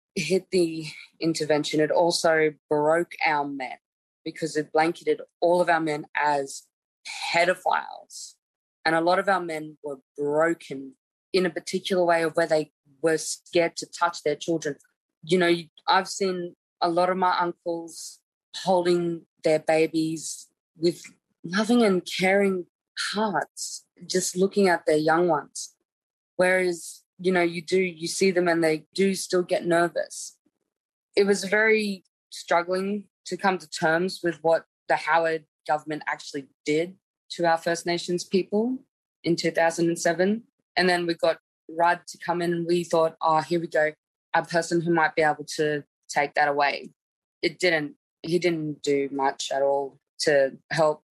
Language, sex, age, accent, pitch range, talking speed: English, female, 20-39, Australian, 155-180 Hz, 155 wpm